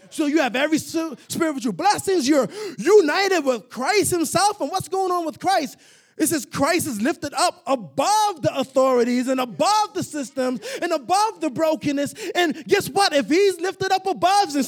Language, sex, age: English, male, 20-39